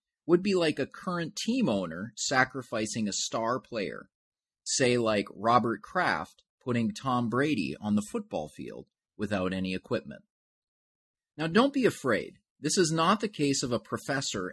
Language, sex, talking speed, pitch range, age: English, male, 155 wpm, 105-155 Hz, 30-49